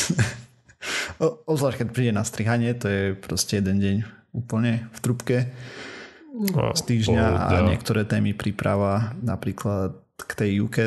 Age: 20-39